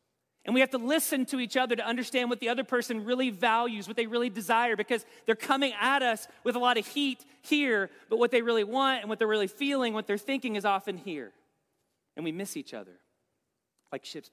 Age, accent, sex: 40-59, American, male